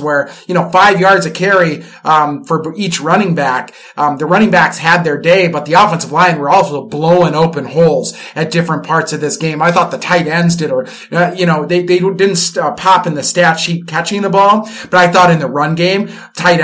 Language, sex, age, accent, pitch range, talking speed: English, male, 30-49, American, 160-185 Hz, 225 wpm